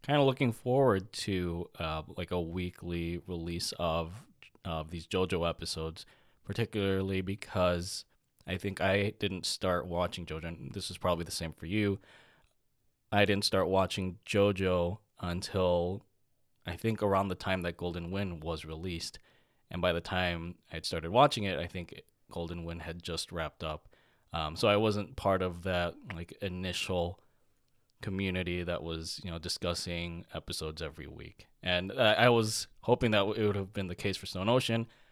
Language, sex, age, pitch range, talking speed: English, male, 20-39, 85-100 Hz, 165 wpm